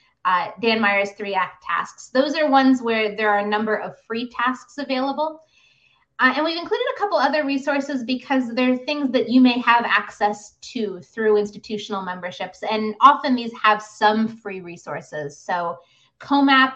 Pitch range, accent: 180-240 Hz, American